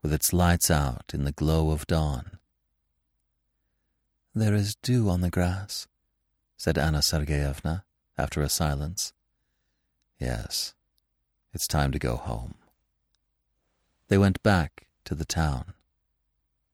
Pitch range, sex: 70-110 Hz, male